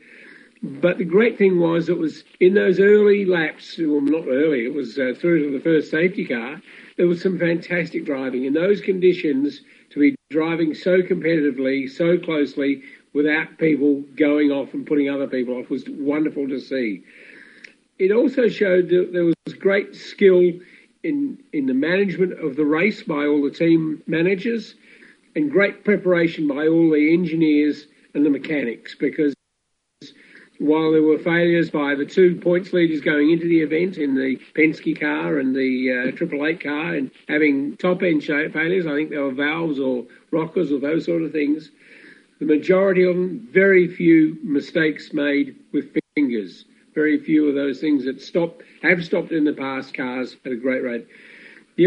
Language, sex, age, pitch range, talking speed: English, male, 50-69, 145-180 Hz, 170 wpm